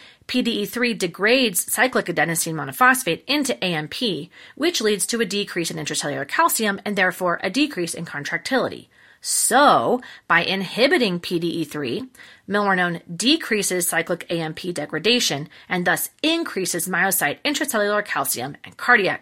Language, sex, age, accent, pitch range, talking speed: English, female, 30-49, American, 175-260 Hz, 120 wpm